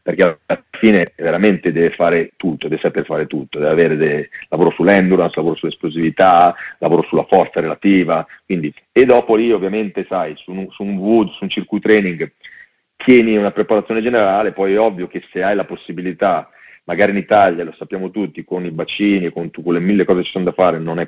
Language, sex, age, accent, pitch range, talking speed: Italian, male, 40-59, native, 85-105 Hz, 200 wpm